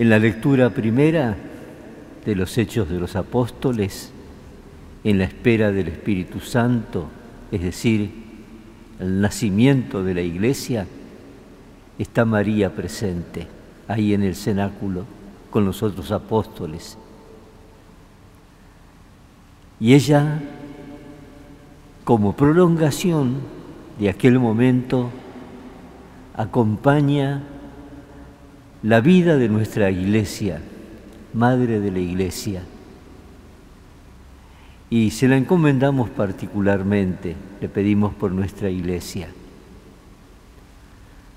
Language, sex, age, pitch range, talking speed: Spanish, male, 50-69, 95-130 Hz, 90 wpm